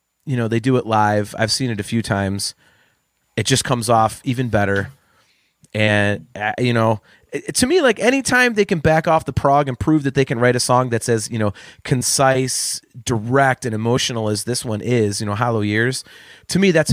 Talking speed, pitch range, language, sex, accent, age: 220 wpm, 110-135 Hz, English, male, American, 30-49